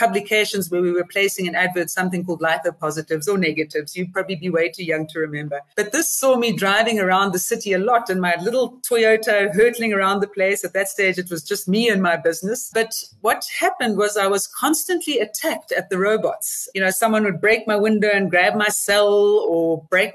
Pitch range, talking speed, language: 185-230 Hz, 215 wpm, English